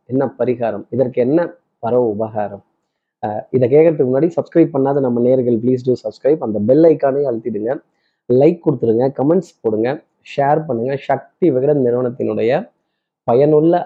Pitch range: 120-155 Hz